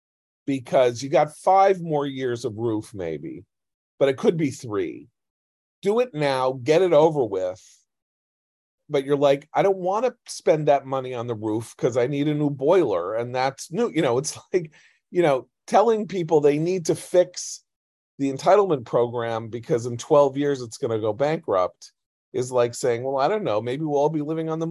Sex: male